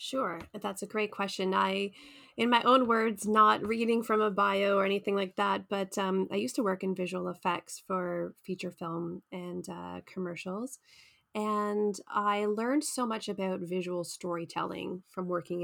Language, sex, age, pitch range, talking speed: English, female, 20-39, 185-215 Hz, 170 wpm